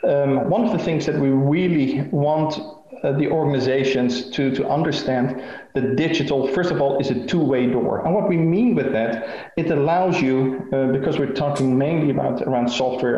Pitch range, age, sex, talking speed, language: 130-165 Hz, 40-59, male, 185 wpm, English